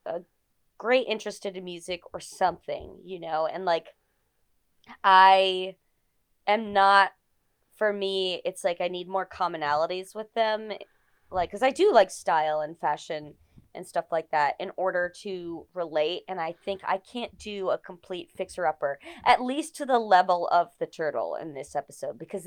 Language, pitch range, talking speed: English, 170-215 Hz, 165 wpm